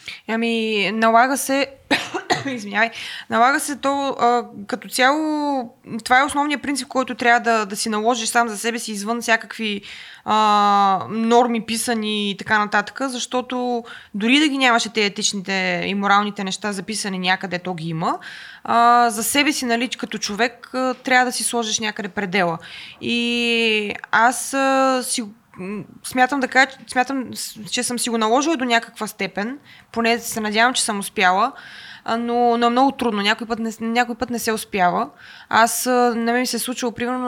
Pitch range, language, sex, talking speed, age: 205-245 Hz, Bulgarian, female, 165 wpm, 20-39